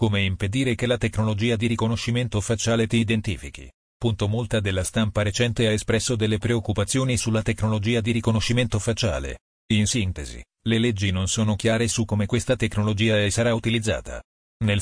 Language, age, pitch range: Italian, 40-59, 105-120 Hz